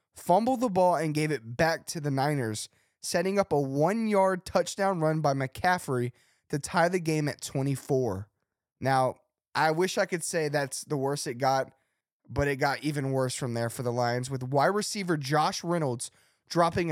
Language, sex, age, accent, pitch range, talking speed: English, male, 20-39, American, 135-180 Hz, 180 wpm